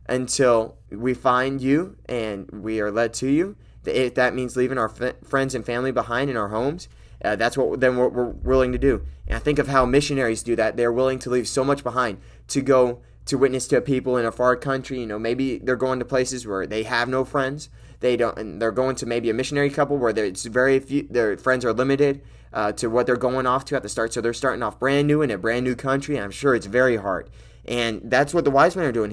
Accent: American